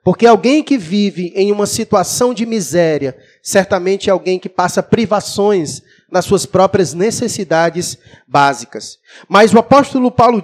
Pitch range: 180-235 Hz